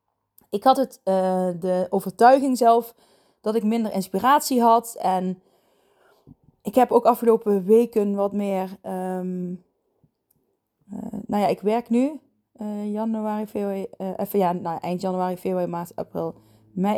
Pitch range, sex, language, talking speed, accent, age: 185-220 Hz, female, Dutch, 140 wpm, Dutch, 20-39